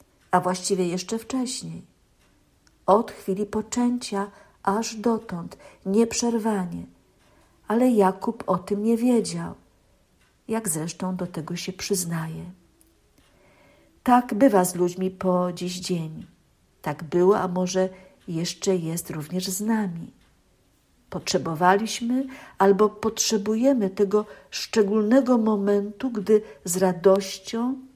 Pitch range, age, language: 180-215 Hz, 50-69, Polish